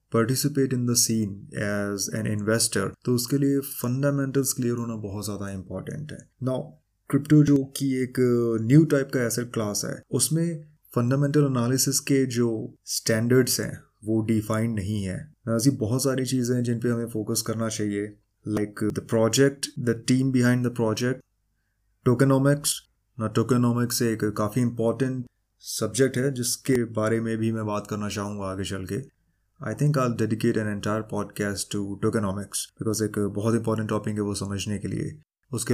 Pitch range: 105-130 Hz